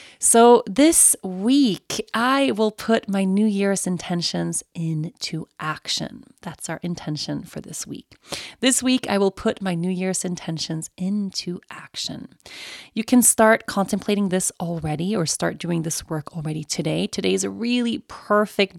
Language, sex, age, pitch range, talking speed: English, female, 30-49, 160-220 Hz, 150 wpm